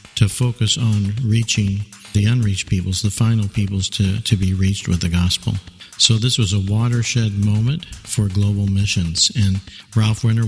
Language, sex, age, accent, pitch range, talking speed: English, male, 50-69, American, 95-115 Hz, 165 wpm